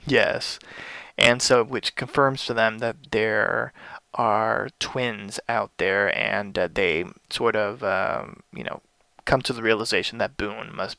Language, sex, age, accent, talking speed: English, male, 20-39, American, 155 wpm